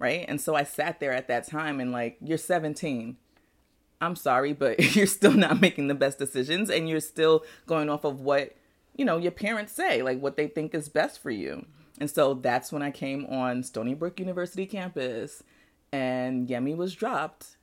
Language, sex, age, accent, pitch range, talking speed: English, female, 30-49, American, 125-160 Hz, 195 wpm